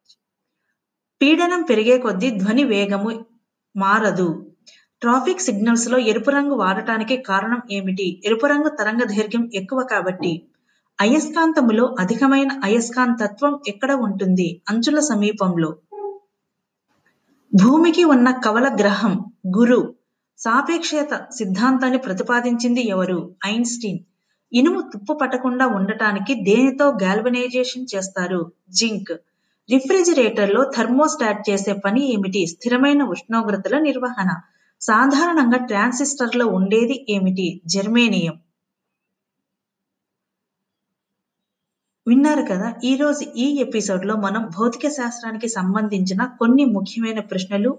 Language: Telugu